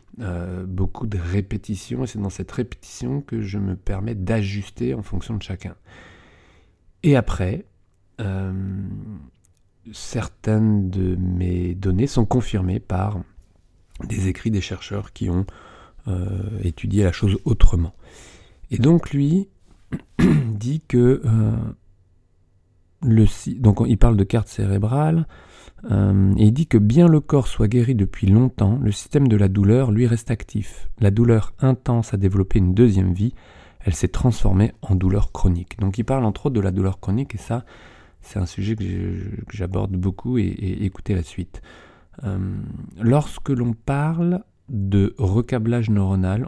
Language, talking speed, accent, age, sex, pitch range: French, 145 wpm, French, 30-49, male, 95-115 Hz